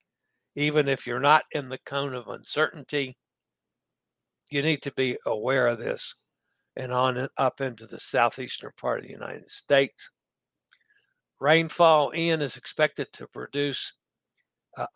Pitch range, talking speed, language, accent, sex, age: 130-150 Hz, 140 wpm, English, American, male, 60-79